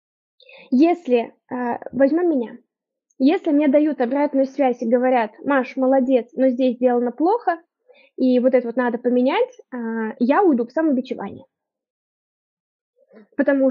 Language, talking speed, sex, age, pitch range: Russian, 120 wpm, female, 20-39, 245-320 Hz